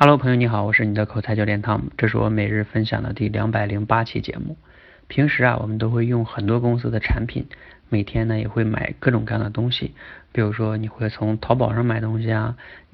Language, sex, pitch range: Chinese, male, 110-125 Hz